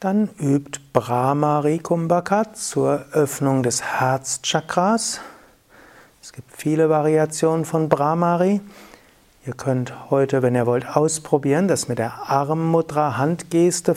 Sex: male